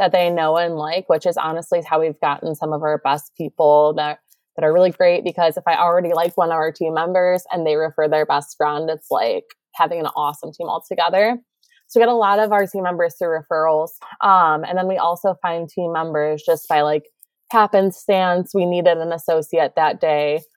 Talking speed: 215 wpm